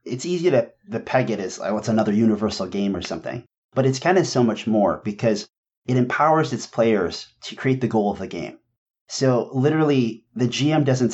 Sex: male